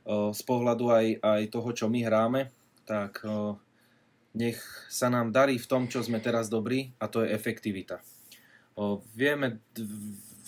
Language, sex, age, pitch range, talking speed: Slovak, male, 20-39, 110-120 Hz, 160 wpm